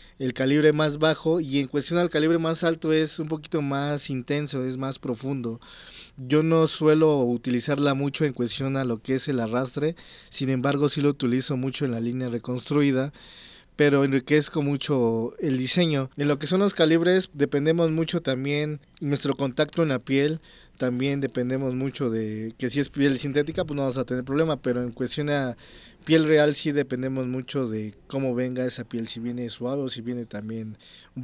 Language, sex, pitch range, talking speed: Spanish, male, 125-145 Hz, 190 wpm